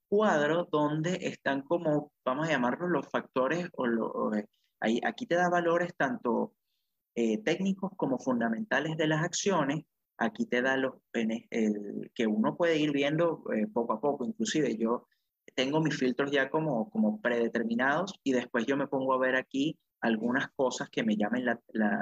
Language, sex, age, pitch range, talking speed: Spanish, male, 30-49, 115-155 Hz, 175 wpm